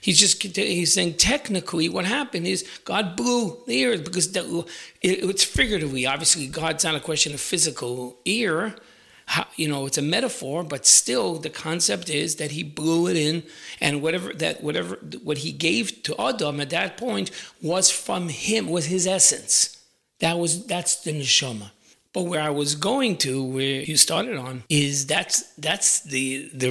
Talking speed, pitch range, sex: 175 wpm, 140-185 Hz, male